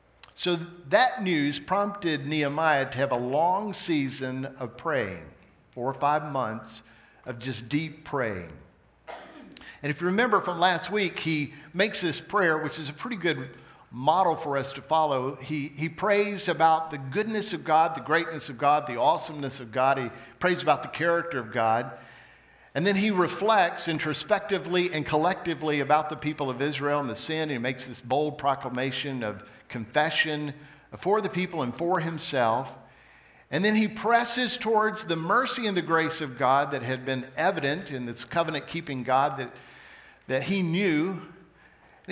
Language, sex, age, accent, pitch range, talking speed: English, male, 50-69, American, 135-180 Hz, 165 wpm